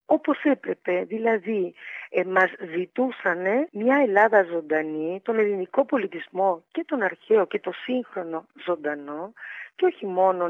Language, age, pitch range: Greek, 50-69, 185-265 Hz